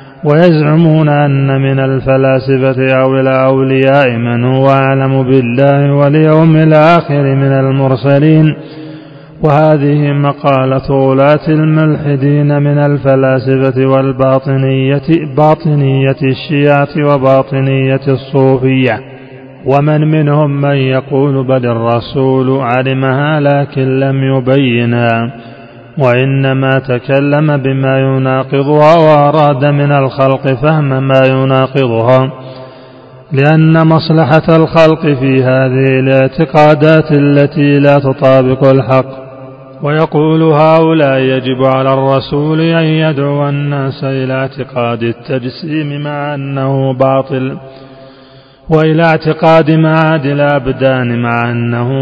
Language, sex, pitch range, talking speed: Arabic, male, 130-145 Hz, 90 wpm